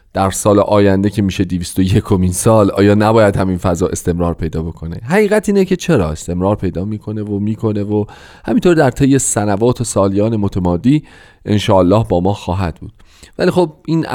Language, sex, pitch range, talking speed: Persian, male, 90-120 Hz, 170 wpm